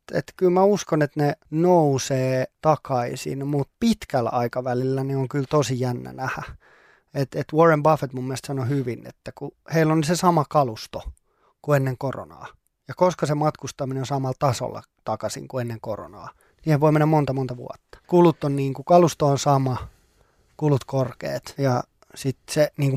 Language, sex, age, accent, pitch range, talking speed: Finnish, male, 20-39, native, 135-155 Hz, 165 wpm